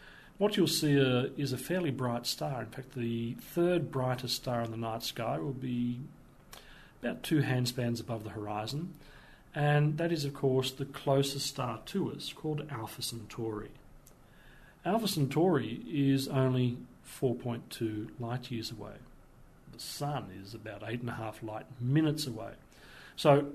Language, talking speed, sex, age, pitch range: English, 155 wpm, male, 40-59, 115-145 Hz